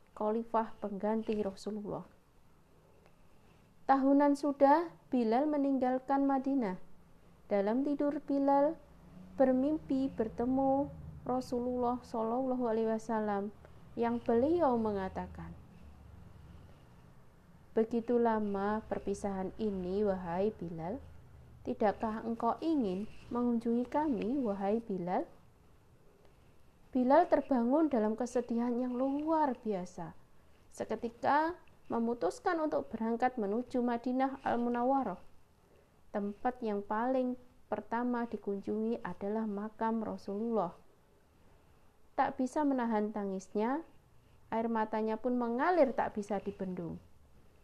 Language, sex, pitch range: Indonesian, female, 205-260 Hz